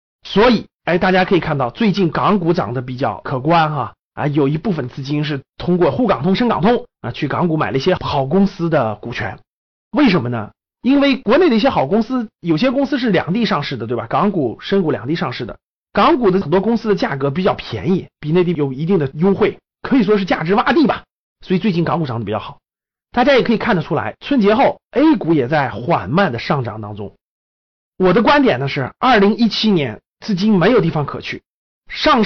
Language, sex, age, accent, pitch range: Chinese, male, 30-49, native, 145-215 Hz